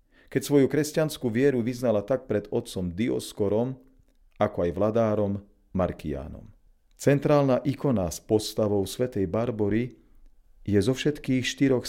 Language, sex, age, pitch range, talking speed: Slovak, male, 40-59, 95-125 Hz, 115 wpm